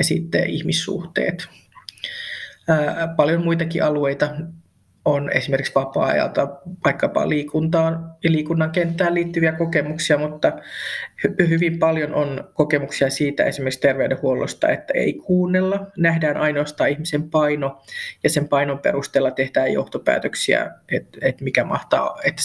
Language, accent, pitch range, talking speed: Finnish, native, 140-165 Hz, 105 wpm